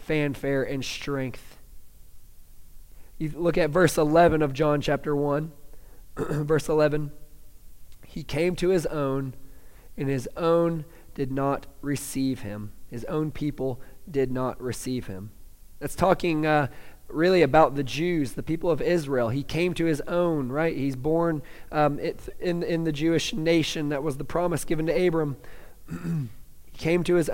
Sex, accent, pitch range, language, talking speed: male, American, 130-165 Hz, English, 150 wpm